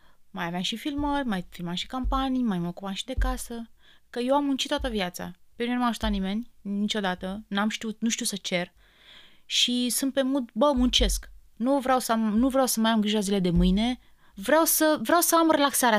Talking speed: 215 wpm